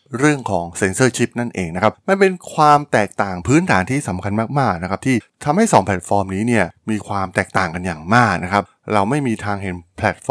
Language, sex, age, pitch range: Thai, male, 20-39, 95-120 Hz